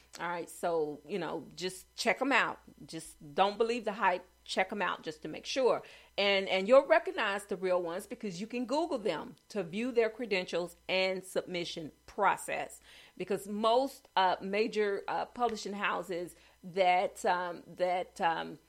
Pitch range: 175-205 Hz